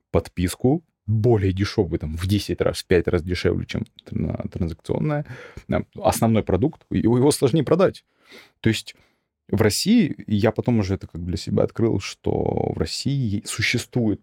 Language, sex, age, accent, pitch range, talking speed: Russian, male, 30-49, native, 95-115 Hz, 145 wpm